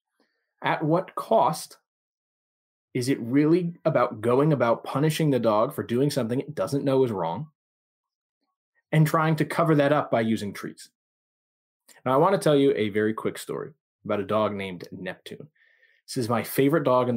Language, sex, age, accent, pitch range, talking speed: English, male, 20-39, American, 115-160 Hz, 175 wpm